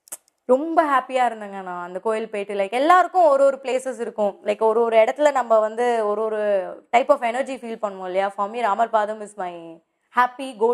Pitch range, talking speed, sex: 205-275 Hz, 190 wpm, female